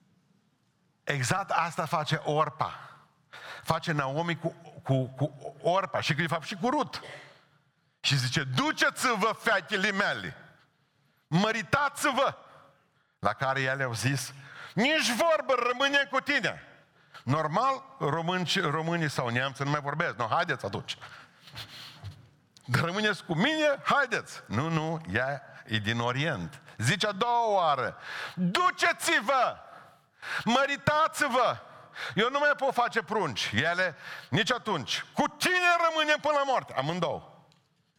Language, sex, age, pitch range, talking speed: Romanian, male, 50-69, 130-220 Hz, 120 wpm